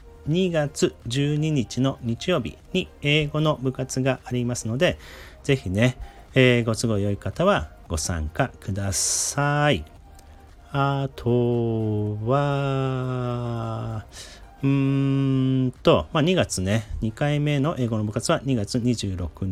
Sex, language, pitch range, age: male, Japanese, 85-130 Hz, 40-59